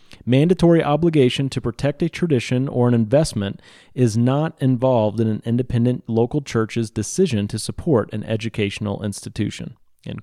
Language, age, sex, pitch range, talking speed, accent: English, 30-49, male, 110-150 Hz, 140 wpm, American